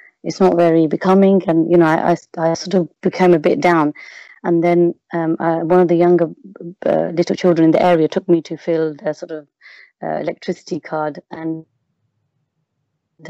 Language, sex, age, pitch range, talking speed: English, female, 30-49, 160-185 Hz, 185 wpm